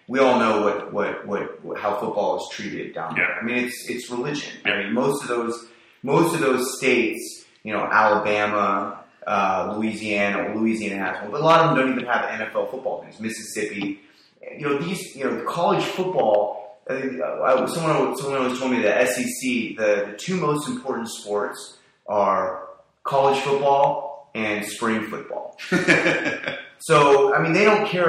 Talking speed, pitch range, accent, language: 170 wpm, 105-130 Hz, American, English